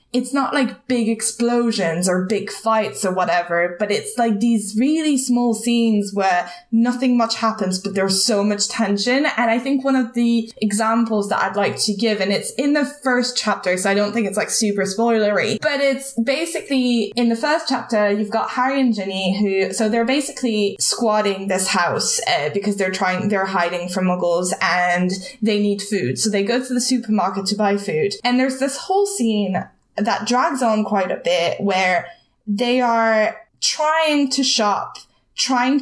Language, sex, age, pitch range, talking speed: English, female, 10-29, 200-245 Hz, 185 wpm